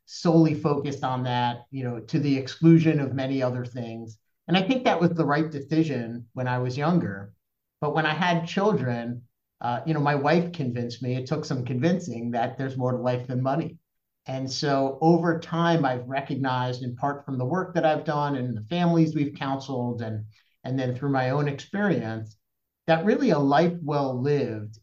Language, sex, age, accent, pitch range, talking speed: English, male, 50-69, American, 125-160 Hz, 195 wpm